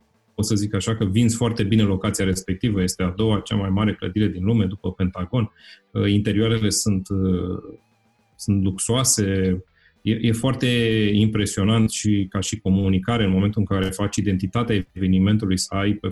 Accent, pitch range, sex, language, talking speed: native, 100-120 Hz, male, Romanian, 160 wpm